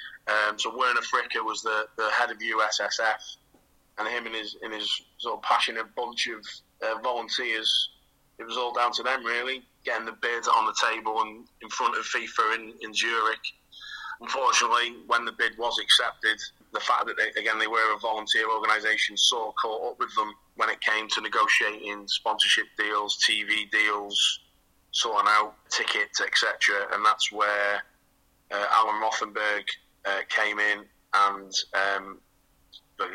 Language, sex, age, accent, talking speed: English, male, 20-39, British, 165 wpm